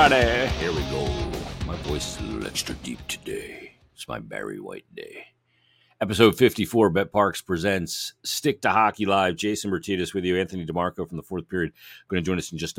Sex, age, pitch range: male, 50-69, 85-110 Hz